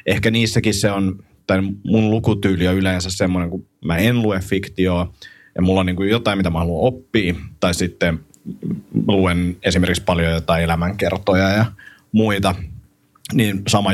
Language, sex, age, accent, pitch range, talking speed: Finnish, male, 30-49, native, 90-105 Hz, 145 wpm